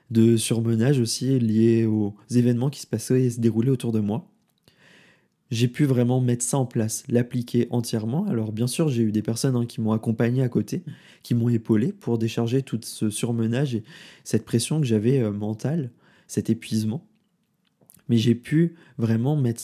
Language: French